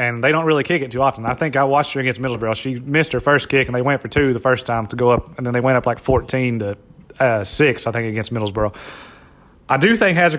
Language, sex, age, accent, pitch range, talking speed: English, male, 30-49, American, 120-145 Hz, 285 wpm